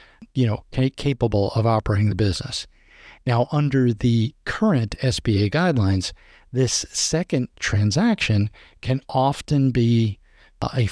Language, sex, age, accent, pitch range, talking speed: English, male, 50-69, American, 110-130 Hz, 110 wpm